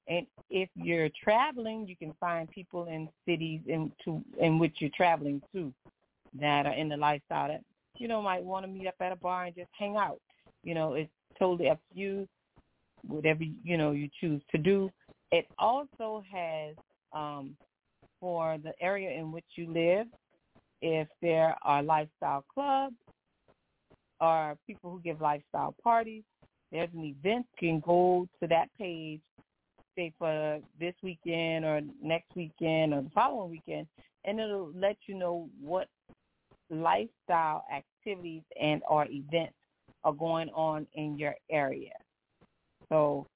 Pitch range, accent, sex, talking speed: 155-190 Hz, American, female, 155 wpm